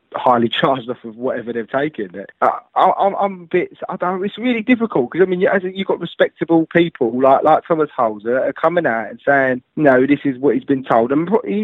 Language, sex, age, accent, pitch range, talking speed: English, male, 20-39, British, 120-150 Hz, 220 wpm